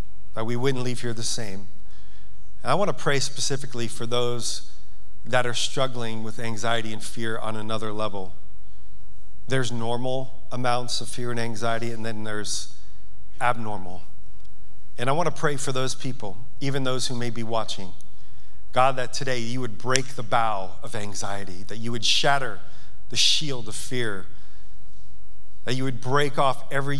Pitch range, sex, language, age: 115-130 Hz, male, English, 40-59